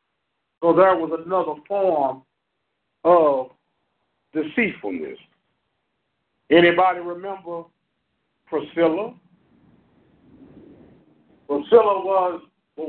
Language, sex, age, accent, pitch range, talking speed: English, male, 50-69, American, 160-205 Hz, 60 wpm